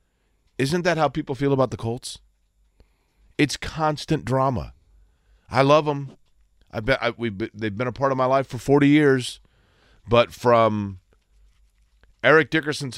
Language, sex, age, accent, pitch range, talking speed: English, male, 40-59, American, 105-125 Hz, 130 wpm